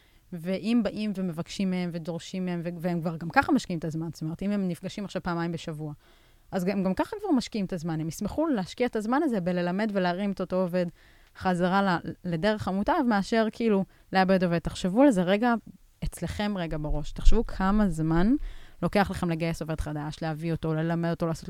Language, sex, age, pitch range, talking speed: Hebrew, female, 20-39, 165-200 Hz, 185 wpm